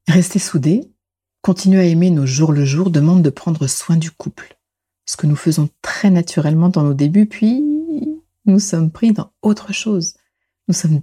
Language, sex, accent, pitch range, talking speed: French, female, French, 140-190 Hz, 180 wpm